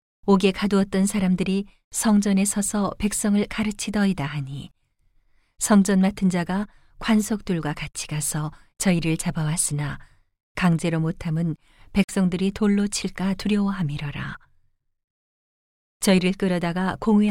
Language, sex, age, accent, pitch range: Korean, female, 40-59, native, 155-200 Hz